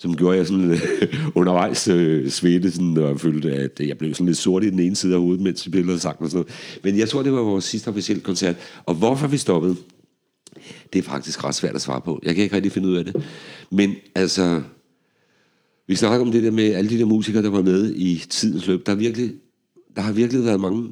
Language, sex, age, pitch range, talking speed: Danish, male, 60-79, 85-105 Hz, 240 wpm